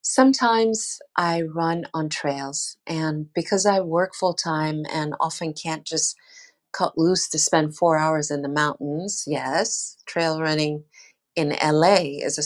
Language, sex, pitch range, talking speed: English, female, 150-190 Hz, 150 wpm